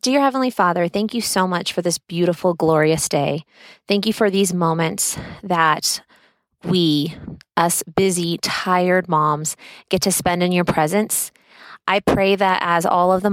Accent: American